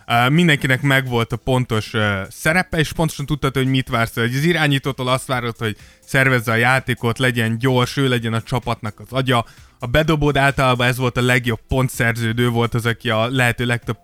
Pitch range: 115-135 Hz